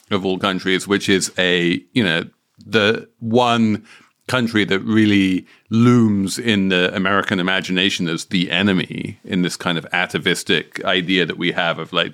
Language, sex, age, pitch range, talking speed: English, male, 40-59, 100-140 Hz, 160 wpm